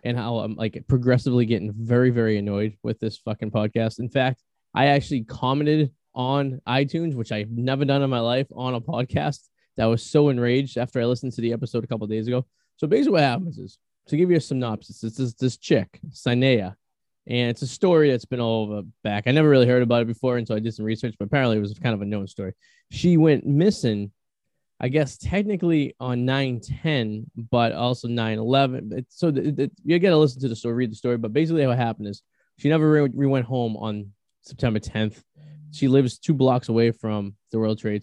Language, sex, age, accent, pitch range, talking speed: English, male, 20-39, American, 110-135 Hz, 220 wpm